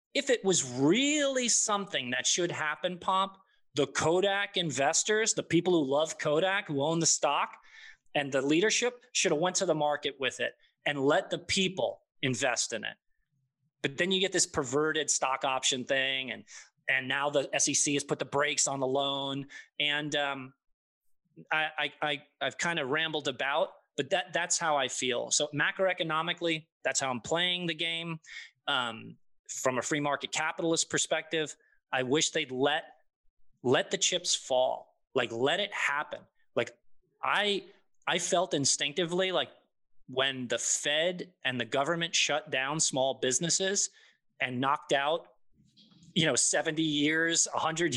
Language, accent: English, American